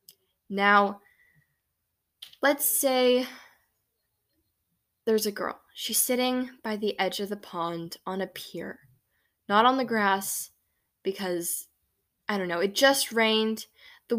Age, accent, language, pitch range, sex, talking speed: 10-29, American, English, 190-240 Hz, female, 125 wpm